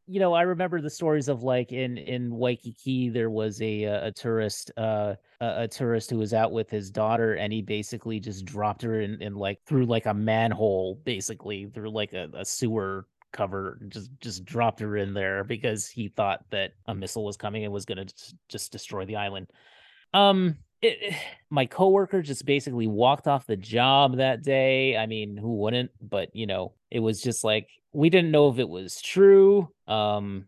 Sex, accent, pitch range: male, American, 105-130 Hz